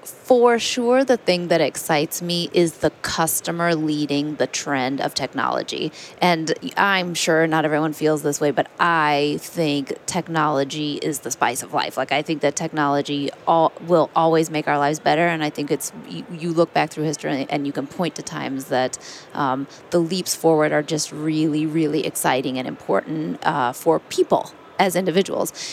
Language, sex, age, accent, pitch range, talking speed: English, female, 20-39, American, 150-185 Hz, 175 wpm